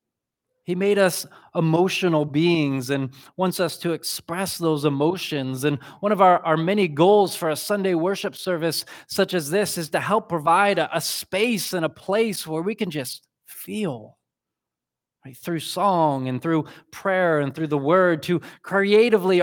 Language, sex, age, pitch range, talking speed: English, male, 20-39, 140-180 Hz, 165 wpm